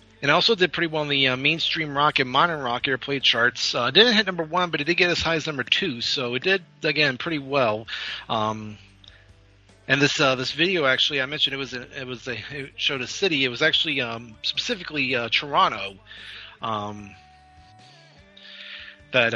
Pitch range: 115-150 Hz